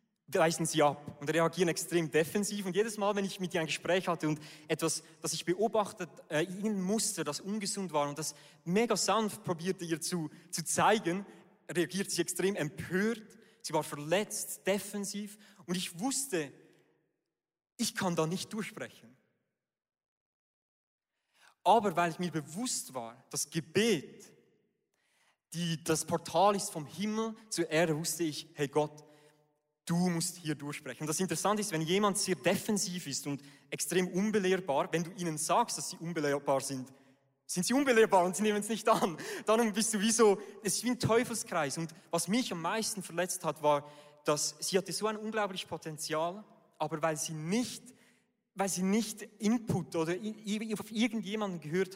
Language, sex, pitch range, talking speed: German, male, 160-205 Hz, 165 wpm